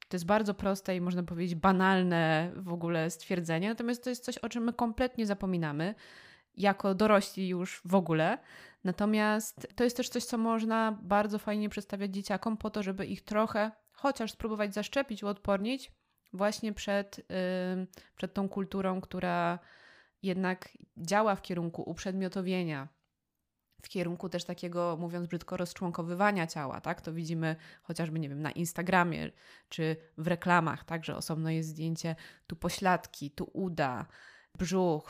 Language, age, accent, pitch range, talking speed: Polish, 20-39, native, 170-200 Hz, 145 wpm